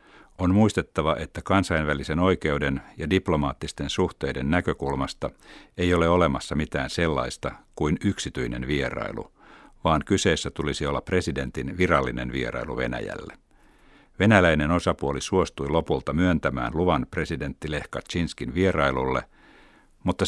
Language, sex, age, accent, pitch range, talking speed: Finnish, male, 60-79, native, 70-90 Hz, 105 wpm